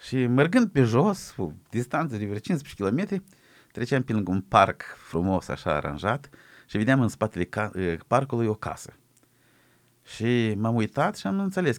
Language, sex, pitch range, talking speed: Romanian, male, 115-160 Hz, 155 wpm